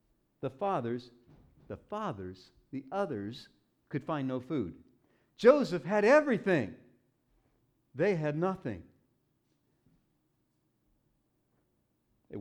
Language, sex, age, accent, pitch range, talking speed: English, male, 50-69, American, 115-160 Hz, 80 wpm